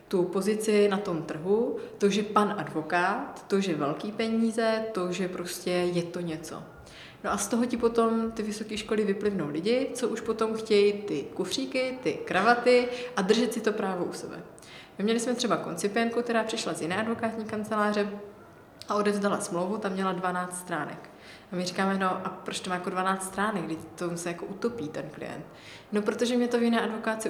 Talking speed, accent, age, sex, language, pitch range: 190 wpm, native, 20-39, female, Czech, 180-220 Hz